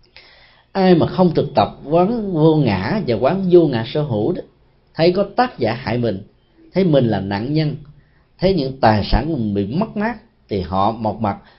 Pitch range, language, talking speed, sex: 105-170 Hz, Vietnamese, 195 wpm, male